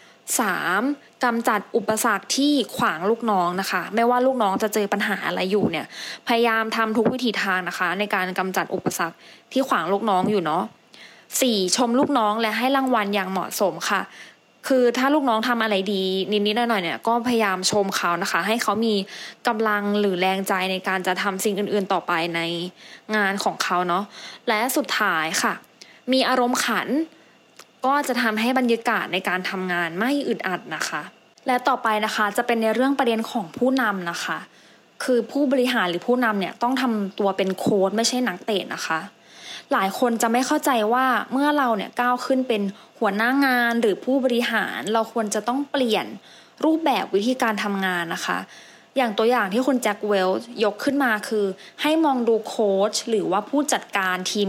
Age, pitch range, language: 20-39, 195-250 Hz, English